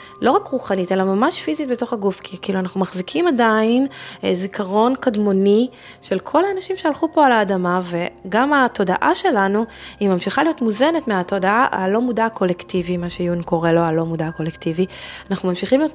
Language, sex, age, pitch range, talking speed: Hebrew, female, 20-39, 175-245 Hz, 160 wpm